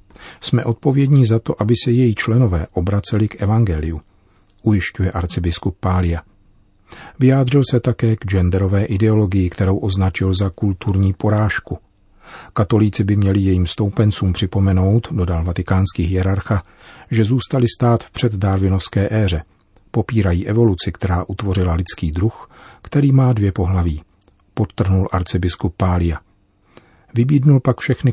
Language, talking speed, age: Czech, 120 wpm, 40-59